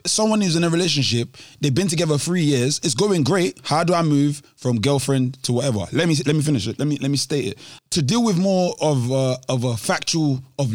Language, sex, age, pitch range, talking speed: English, male, 20-39, 130-165 Hz, 240 wpm